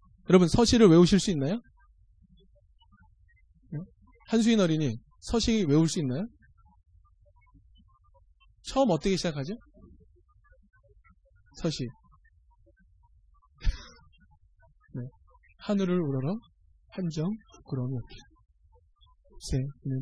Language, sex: Korean, male